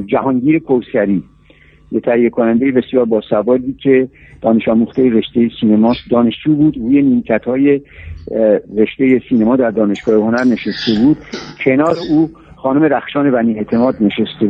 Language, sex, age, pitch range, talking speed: Persian, male, 60-79, 115-145 Hz, 130 wpm